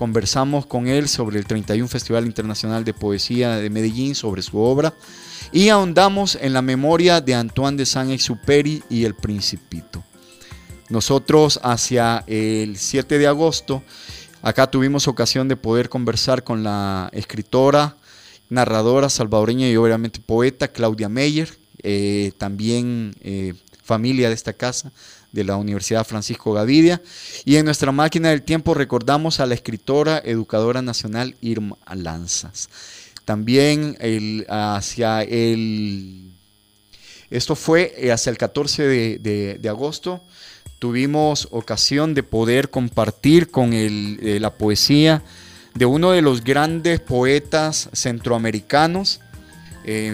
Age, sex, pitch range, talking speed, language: 30-49, male, 105-140 Hz, 130 wpm, Spanish